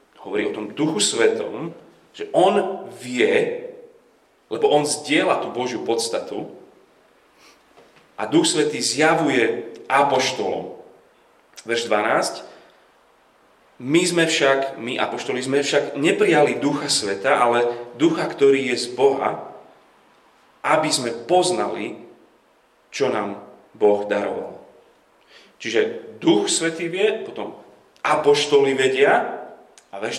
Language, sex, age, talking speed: Slovak, male, 40-59, 105 wpm